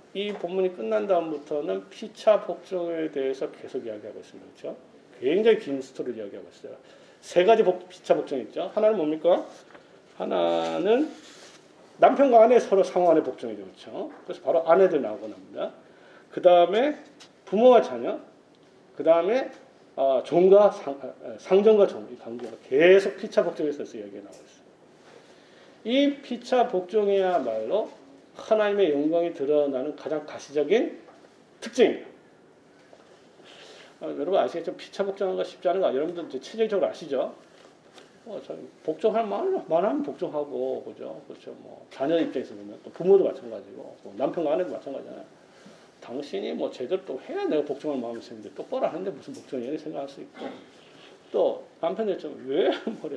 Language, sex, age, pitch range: Korean, male, 40-59, 155-230 Hz